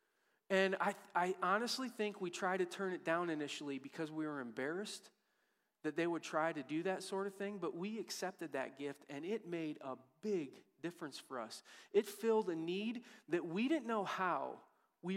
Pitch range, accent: 165-220 Hz, American